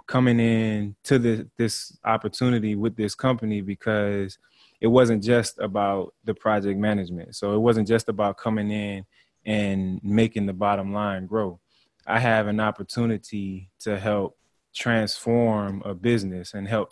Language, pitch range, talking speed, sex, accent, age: English, 100-115 Hz, 145 wpm, male, American, 20-39